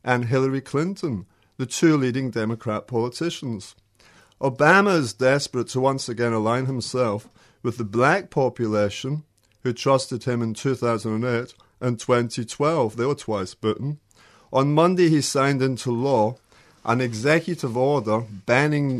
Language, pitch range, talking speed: English, 110-140 Hz, 130 wpm